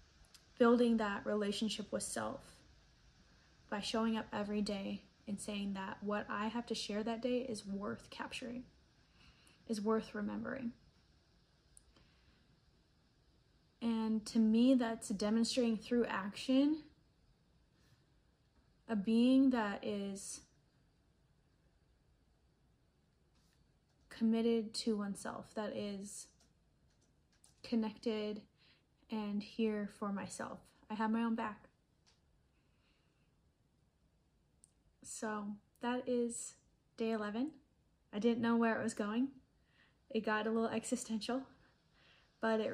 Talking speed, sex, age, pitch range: 100 wpm, female, 10-29, 210-230 Hz